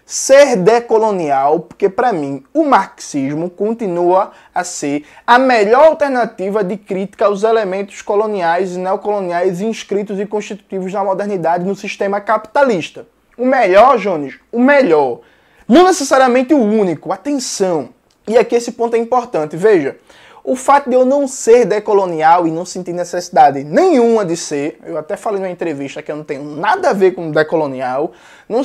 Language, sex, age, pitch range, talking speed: Portuguese, male, 20-39, 175-240 Hz, 155 wpm